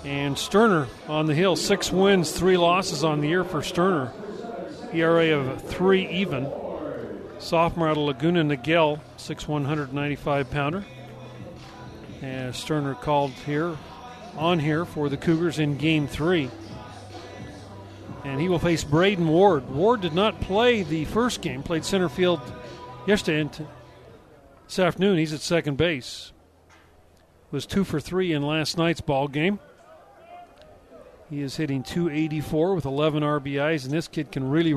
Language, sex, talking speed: English, male, 140 wpm